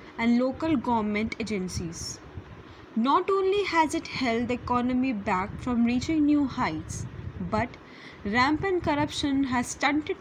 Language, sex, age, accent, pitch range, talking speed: English, female, 10-29, Indian, 225-295 Hz, 125 wpm